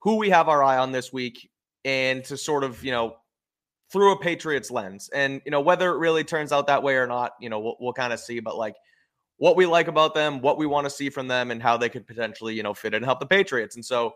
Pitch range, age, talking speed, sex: 115-145 Hz, 20-39, 280 wpm, male